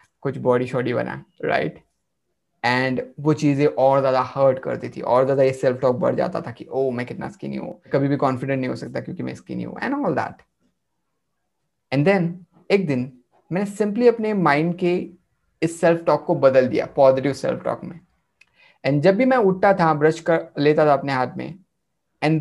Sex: male